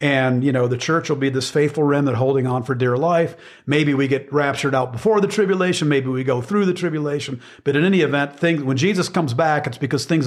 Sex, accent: male, American